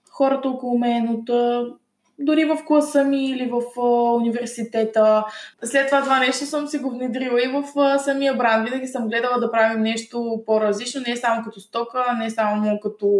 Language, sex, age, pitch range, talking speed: Bulgarian, female, 20-39, 215-250 Hz, 190 wpm